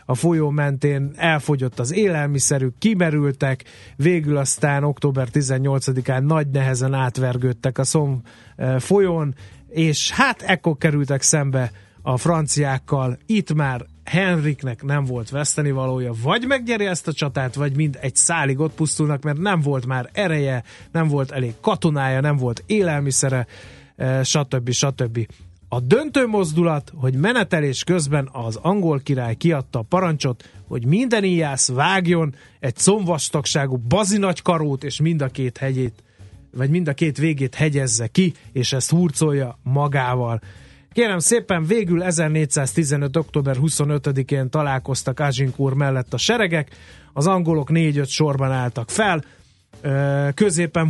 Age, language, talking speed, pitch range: 30-49, Hungarian, 130 wpm, 130-165 Hz